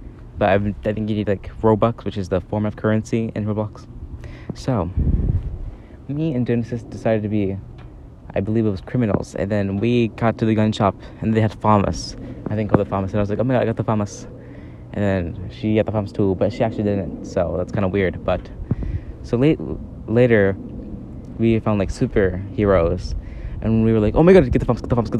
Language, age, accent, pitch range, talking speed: English, 20-39, American, 95-115 Hz, 225 wpm